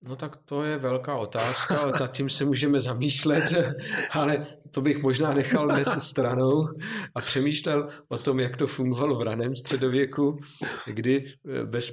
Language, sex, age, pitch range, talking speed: Czech, male, 50-69, 115-140 Hz, 150 wpm